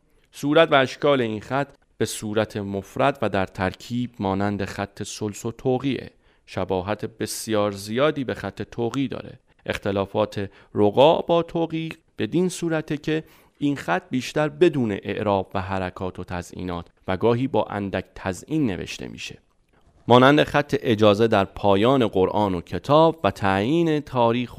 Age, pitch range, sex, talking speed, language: 30-49, 95-130 Hz, male, 140 wpm, Persian